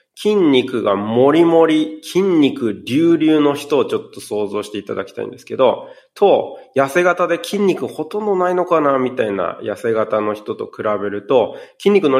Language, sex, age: Japanese, male, 20-39